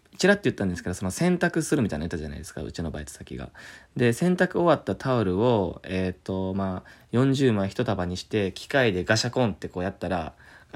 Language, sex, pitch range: Japanese, male, 95-135 Hz